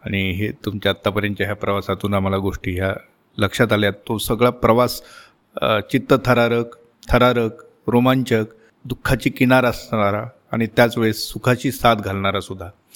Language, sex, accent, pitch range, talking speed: Marathi, male, native, 115-135 Hz, 125 wpm